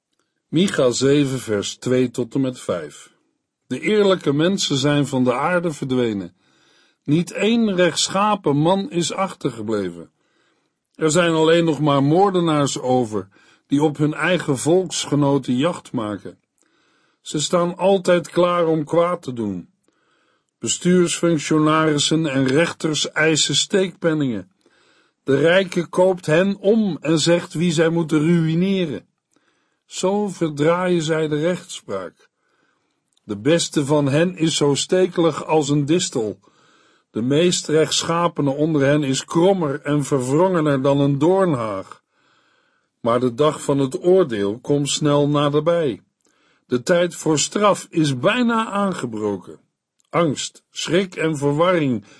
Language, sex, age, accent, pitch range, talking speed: Dutch, male, 50-69, Dutch, 140-175 Hz, 125 wpm